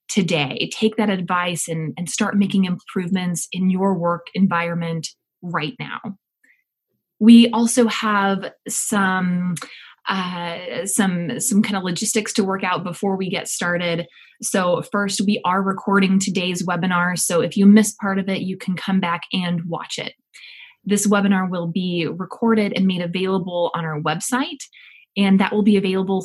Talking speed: 160 wpm